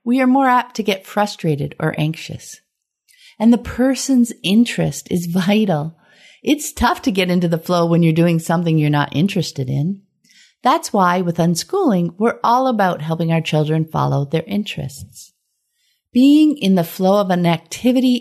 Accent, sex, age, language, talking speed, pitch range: American, female, 50-69, English, 165 wpm, 165-240 Hz